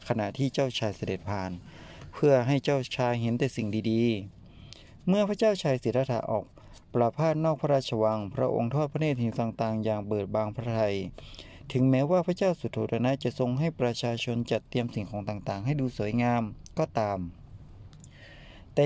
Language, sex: Thai, male